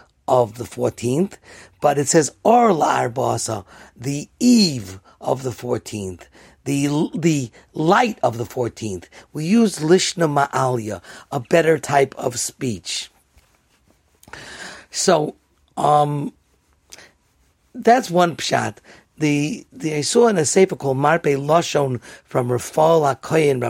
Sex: male